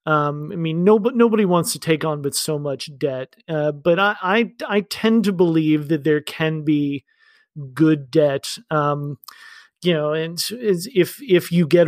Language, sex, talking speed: English, male, 180 wpm